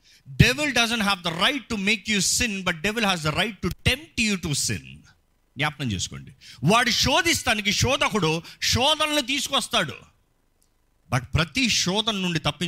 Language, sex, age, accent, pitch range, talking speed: Telugu, male, 50-69, native, 130-215 Hz, 160 wpm